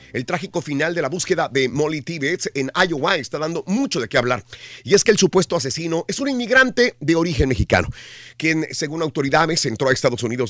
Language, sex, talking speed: Spanish, male, 205 wpm